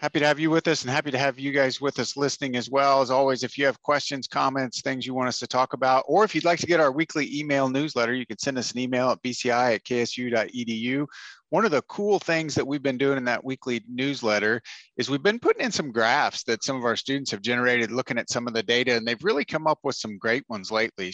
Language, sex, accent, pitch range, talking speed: English, male, American, 120-150 Hz, 265 wpm